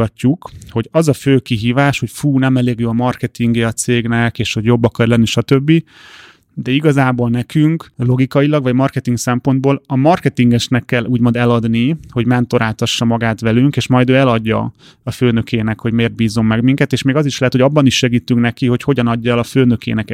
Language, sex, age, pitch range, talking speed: Hungarian, male, 30-49, 120-135 Hz, 190 wpm